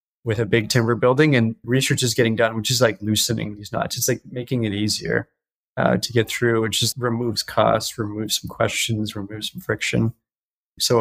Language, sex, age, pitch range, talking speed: English, male, 20-39, 110-120 Hz, 195 wpm